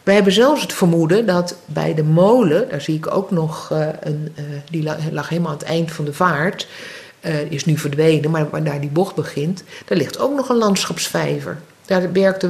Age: 50-69